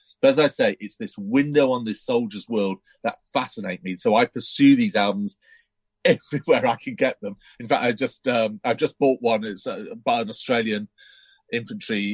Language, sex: English, male